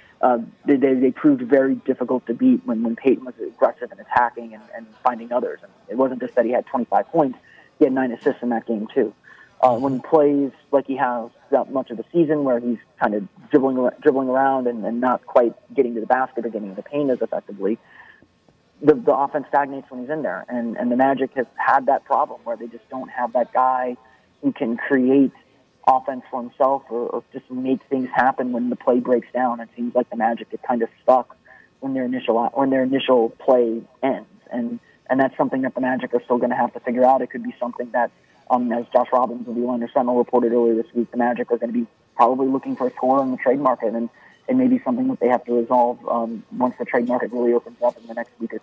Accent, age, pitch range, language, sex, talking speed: American, 30-49, 120-135 Hz, English, male, 240 wpm